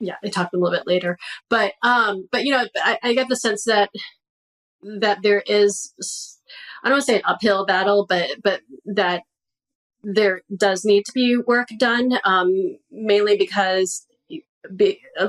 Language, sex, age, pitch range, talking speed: English, female, 30-49, 175-210 Hz, 165 wpm